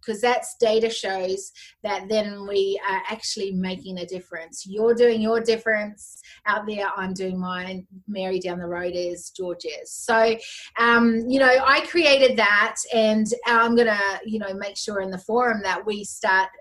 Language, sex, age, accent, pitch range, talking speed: English, female, 30-49, Australian, 190-230 Hz, 175 wpm